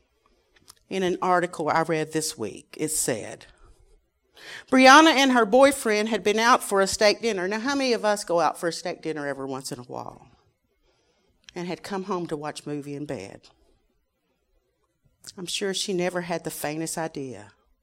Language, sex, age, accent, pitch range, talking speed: English, female, 50-69, American, 170-255 Hz, 180 wpm